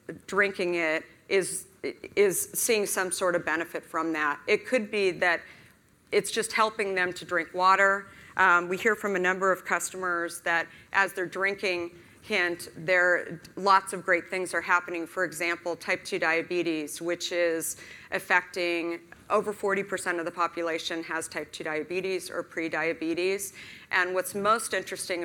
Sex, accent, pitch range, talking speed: female, American, 170-190 Hz, 155 wpm